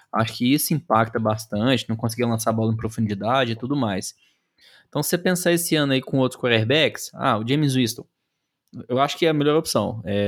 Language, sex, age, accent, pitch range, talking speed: Portuguese, male, 20-39, Brazilian, 115-160 Hz, 215 wpm